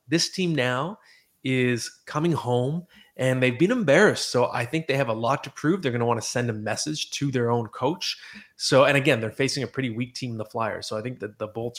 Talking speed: 250 wpm